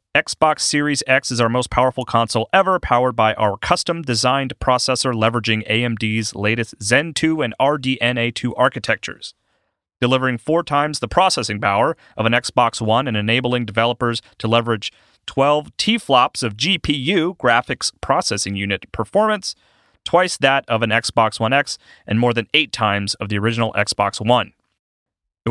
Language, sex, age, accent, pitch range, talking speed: English, male, 30-49, American, 115-145 Hz, 150 wpm